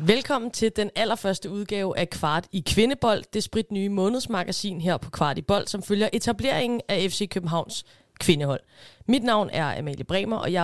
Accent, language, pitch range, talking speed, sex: native, Danish, 175-220 Hz, 180 wpm, female